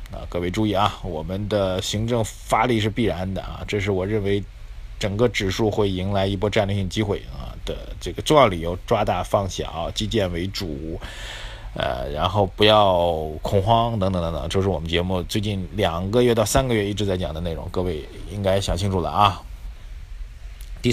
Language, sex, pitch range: Chinese, male, 95-115 Hz